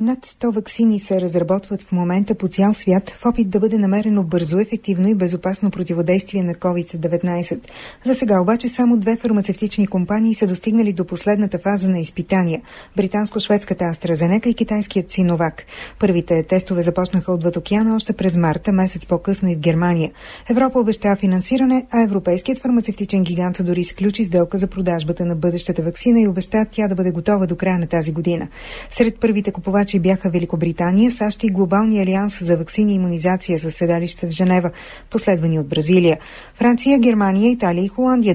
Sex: female